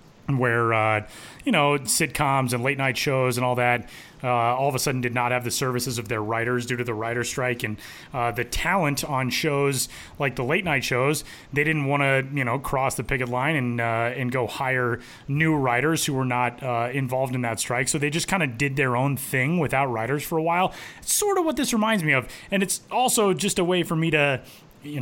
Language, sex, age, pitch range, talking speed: English, male, 30-49, 125-165 Hz, 235 wpm